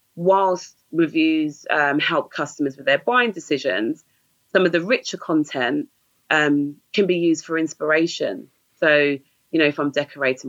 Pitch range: 135-165 Hz